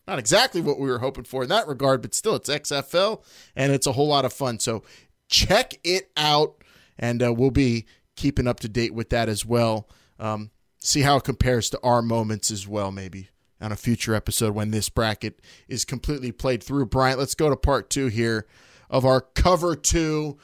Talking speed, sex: 205 wpm, male